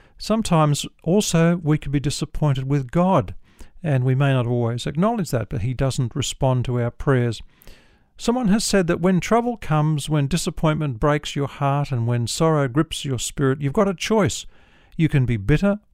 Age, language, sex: 50-69, English, male